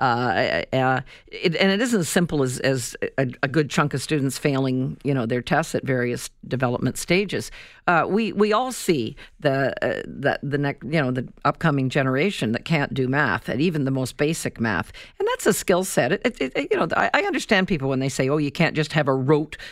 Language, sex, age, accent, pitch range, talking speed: English, female, 50-69, American, 140-220 Hz, 215 wpm